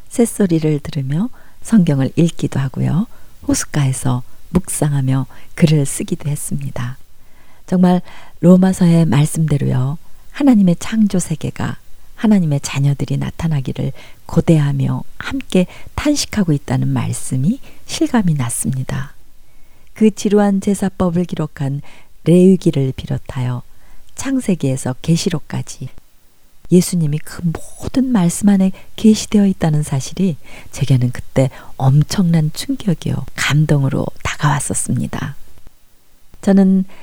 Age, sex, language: 40-59, female, Korean